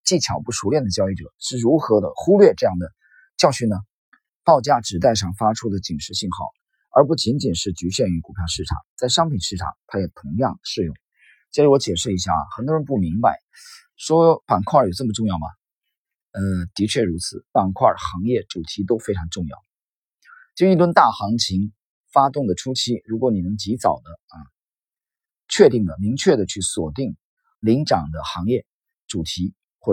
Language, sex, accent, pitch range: Chinese, male, native, 90-125 Hz